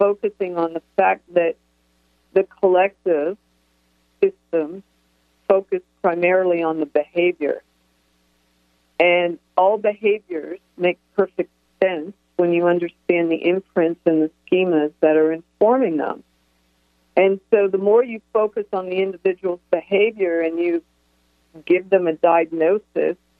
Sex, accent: female, American